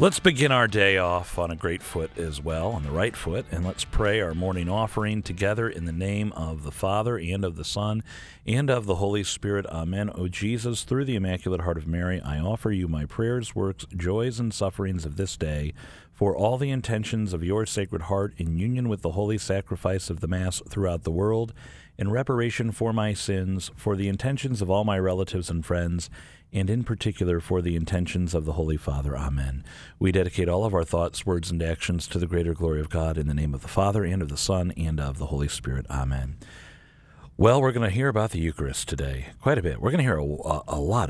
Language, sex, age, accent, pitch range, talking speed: English, male, 40-59, American, 80-105 Hz, 225 wpm